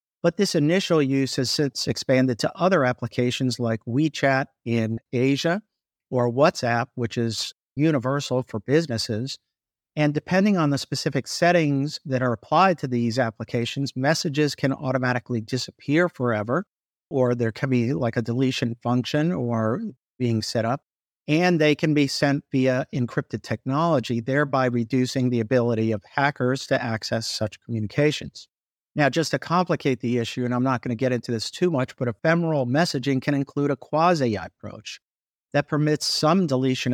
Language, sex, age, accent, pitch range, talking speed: English, male, 50-69, American, 120-150 Hz, 155 wpm